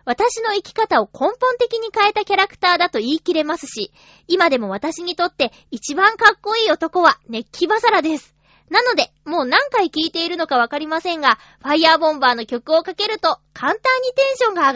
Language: Japanese